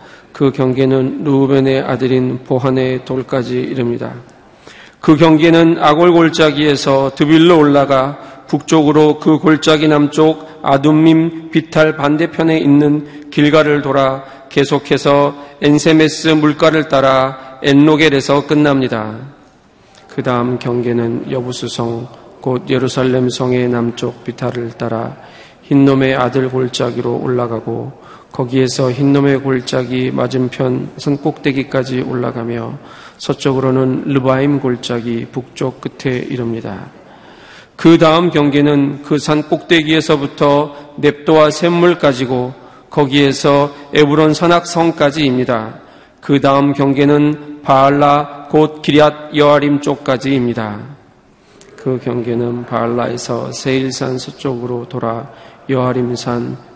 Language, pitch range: Korean, 130-150 Hz